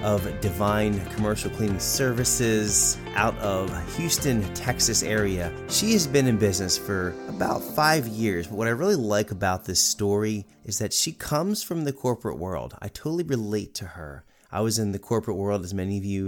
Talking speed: 185 wpm